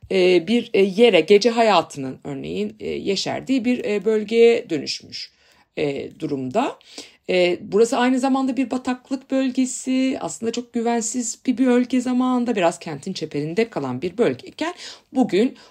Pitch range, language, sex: 155-240 Hz, Turkish, female